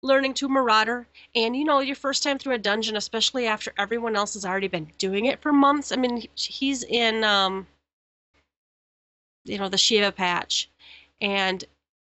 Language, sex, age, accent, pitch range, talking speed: English, female, 30-49, American, 200-245 Hz, 170 wpm